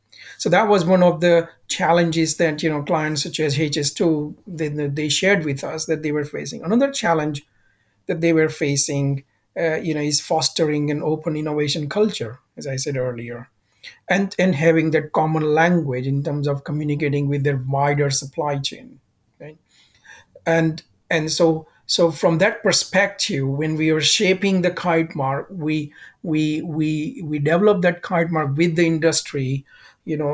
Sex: male